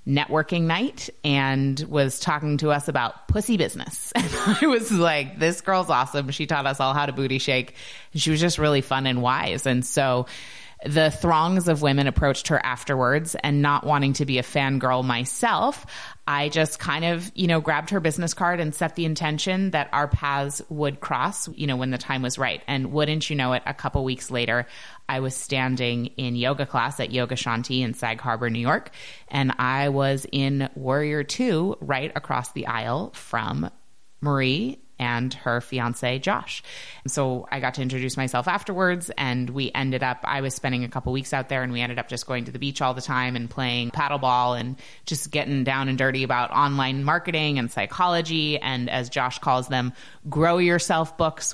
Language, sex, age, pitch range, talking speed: English, female, 20-39, 130-155 Hz, 200 wpm